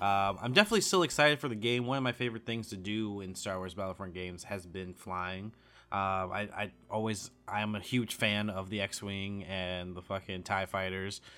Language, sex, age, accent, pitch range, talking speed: English, male, 20-39, American, 95-120 Hz, 205 wpm